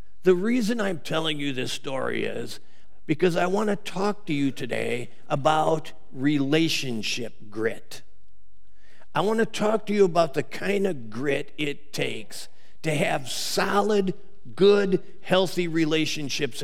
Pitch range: 155-210 Hz